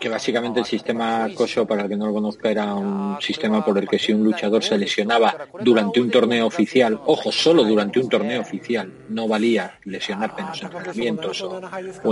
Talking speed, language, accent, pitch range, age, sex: 200 wpm, Spanish, Spanish, 110-140 Hz, 40-59, male